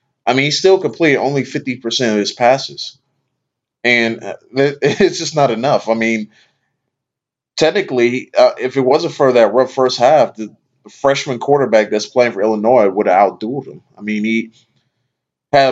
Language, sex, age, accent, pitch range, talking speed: English, male, 30-49, American, 110-135 Hz, 165 wpm